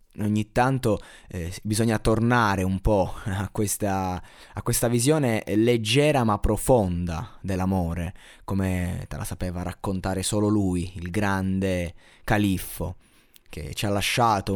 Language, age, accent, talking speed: Italian, 20-39, native, 125 wpm